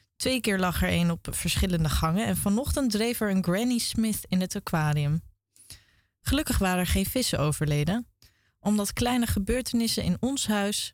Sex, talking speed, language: female, 165 wpm, Dutch